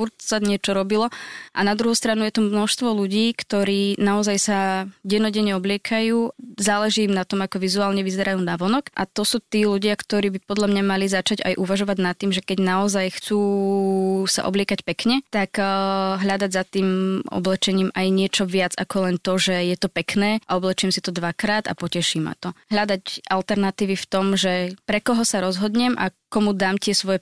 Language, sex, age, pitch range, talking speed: Slovak, female, 20-39, 185-205 Hz, 185 wpm